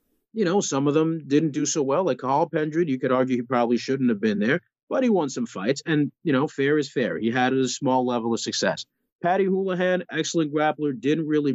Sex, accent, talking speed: male, American, 235 wpm